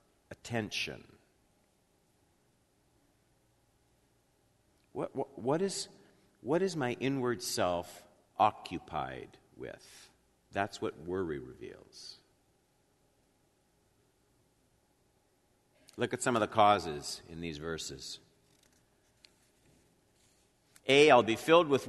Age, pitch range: 50-69, 95-120 Hz